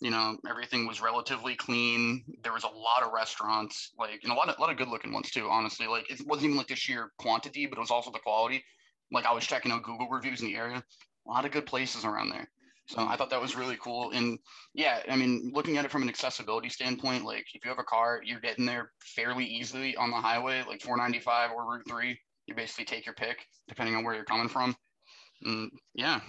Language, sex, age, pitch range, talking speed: English, male, 30-49, 115-130 Hz, 235 wpm